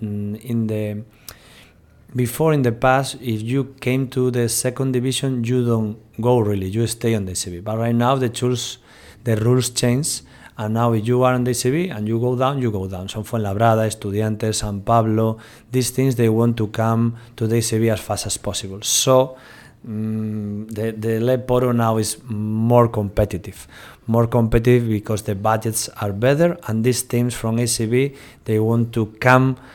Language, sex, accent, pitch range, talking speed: Czech, male, Spanish, 105-125 Hz, 180 wpm